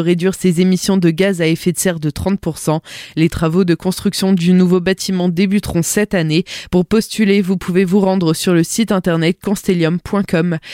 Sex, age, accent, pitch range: female, 20-39, French, 170-195 Hz